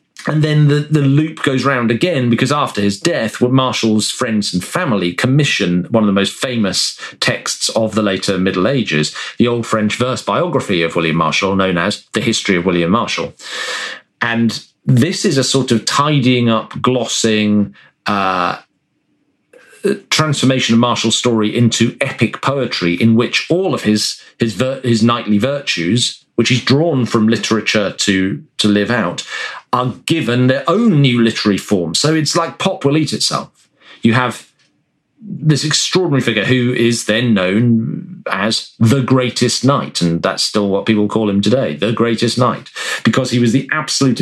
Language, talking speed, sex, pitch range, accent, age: English, 165 wpm, male, 105-130 Hz, British, 40-59